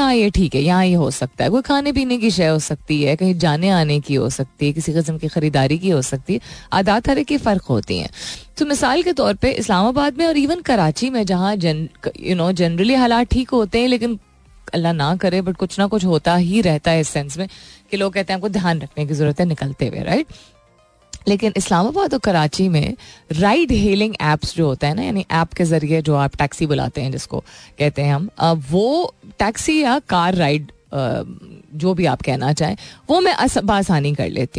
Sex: female